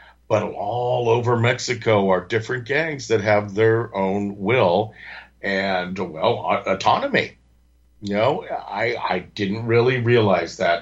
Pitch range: 90-130 Hz